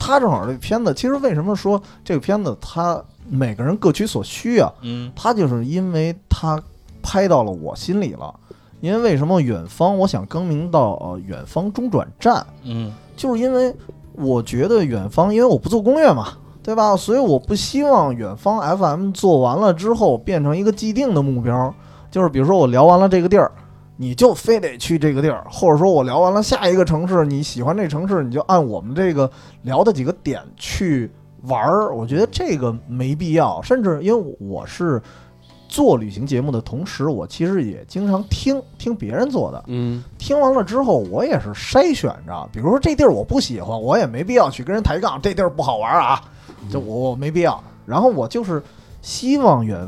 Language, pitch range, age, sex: Chinese, 130-205 Hz, 20-39, male